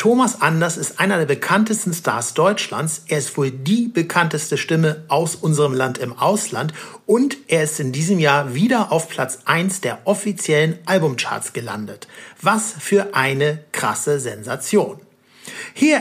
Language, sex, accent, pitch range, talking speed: German, male, German, 150-195 Hz, 145 wpm